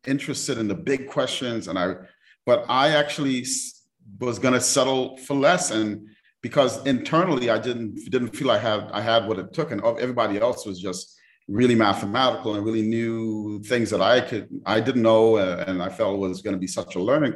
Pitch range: 105-155 Hz